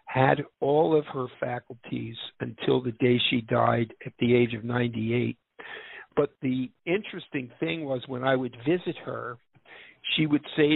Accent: American